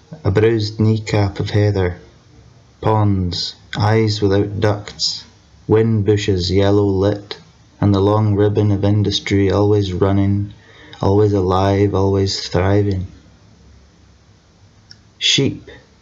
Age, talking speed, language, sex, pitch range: 20-39, 95 wpm, English, male, 100-110 Hz